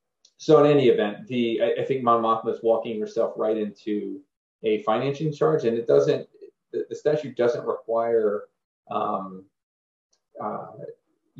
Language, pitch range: English, 105-155 Hz